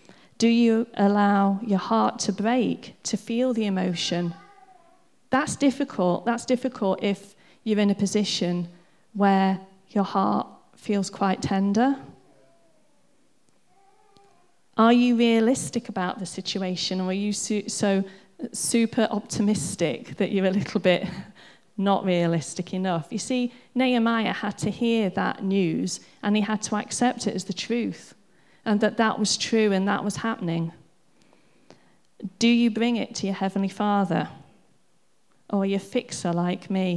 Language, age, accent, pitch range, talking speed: English, 40-59, British, 190-230 Hz, 140 wpm